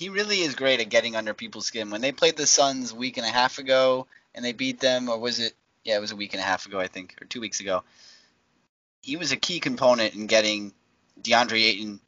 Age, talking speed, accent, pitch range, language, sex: 20-39, 255 wpm, American, 100-150 Hz, English, male